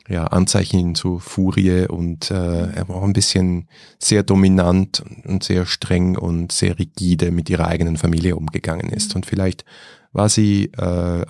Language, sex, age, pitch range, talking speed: German, male, 30-49, 90-110 Hz, 155 wpm